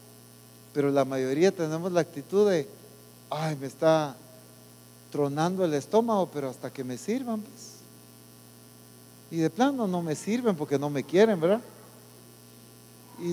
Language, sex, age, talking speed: English, male, 50-69, 140 wpm